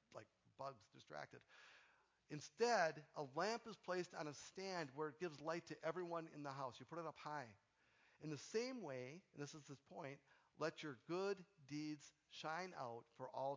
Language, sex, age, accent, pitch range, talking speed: English, male, 50-69, American, 135-180 Hz, 185 wpm